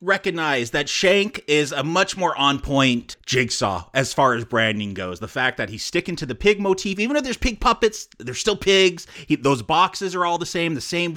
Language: English